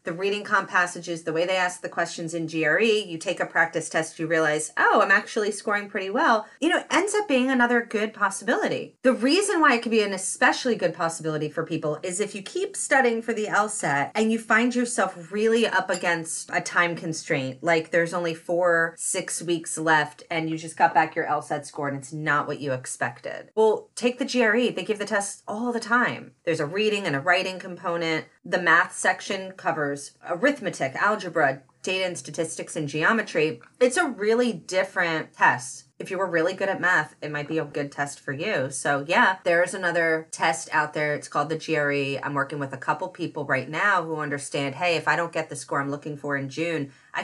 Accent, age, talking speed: American, 30-49, 215 wpm